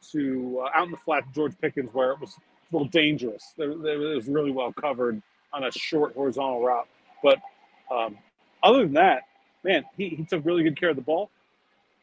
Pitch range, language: 140-185 Hz, English